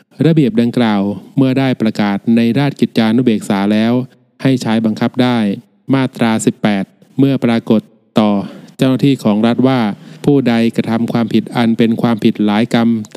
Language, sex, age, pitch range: Thai, male, 20-39, 110-130 Hz